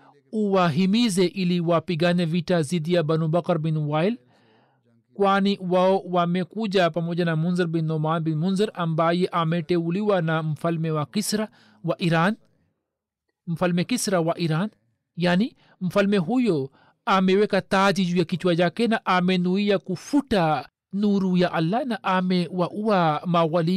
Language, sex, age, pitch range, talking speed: Swahili, male, 50-69, 140-180 Hz, 125 wpm